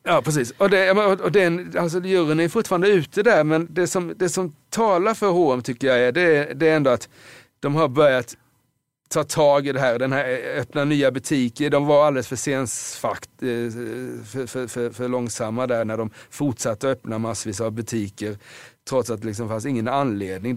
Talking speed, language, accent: 190 wpm, Swedish, native